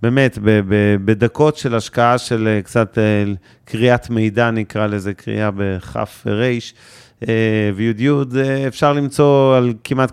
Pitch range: 110-130 Hz